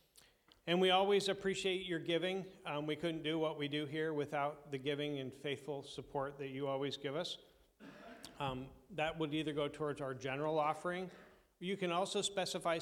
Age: 40-59